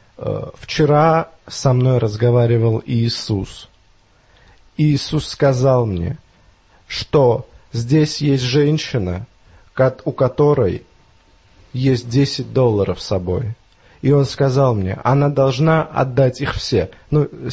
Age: 30-49